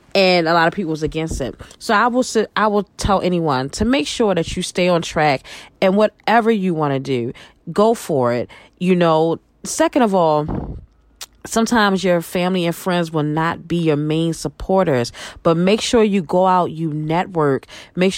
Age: 30-49